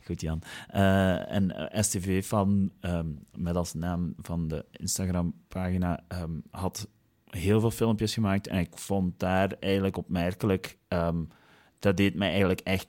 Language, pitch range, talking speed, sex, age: Dutch, 90-105 Hz, 145 wpm, male, 30-49